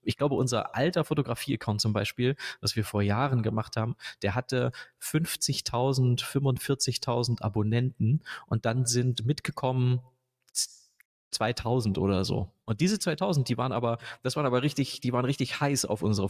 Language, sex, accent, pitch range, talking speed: German, male, German, 115-140 Hz, 150 wpm